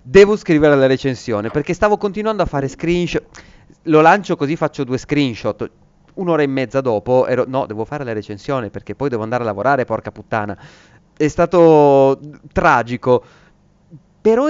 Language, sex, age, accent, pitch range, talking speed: Italian, male, 30-49, native, 120-165 Hz, 155 wpm